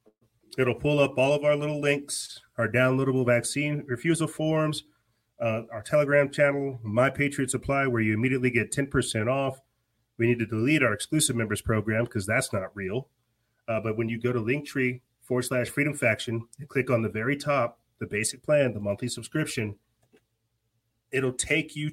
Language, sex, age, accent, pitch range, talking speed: English, male, 30-49, American, 115-130 Hz, 180 wpm